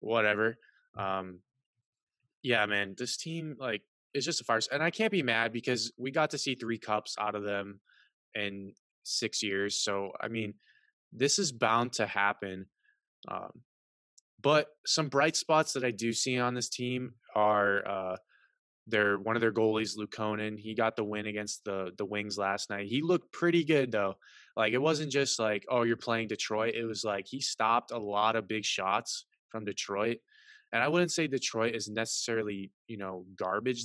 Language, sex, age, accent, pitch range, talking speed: English, male, 20-39, American, 105-130 Hz, 185 wpm